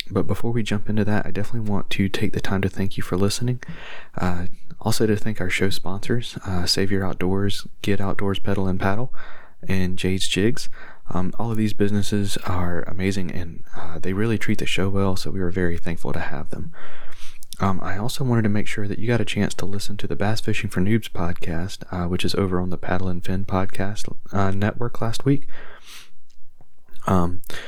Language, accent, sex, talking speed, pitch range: English, American, male, 210 wpm, 90-105 Hz